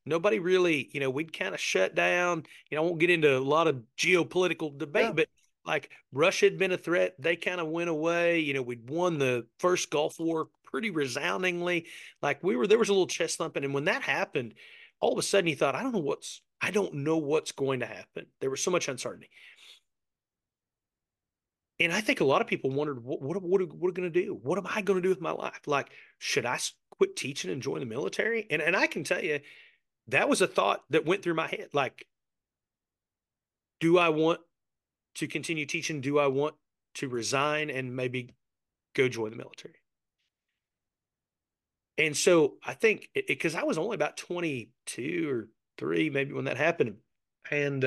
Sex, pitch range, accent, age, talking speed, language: male, 135-180 Hz, American, 30-49, 200 wpm, English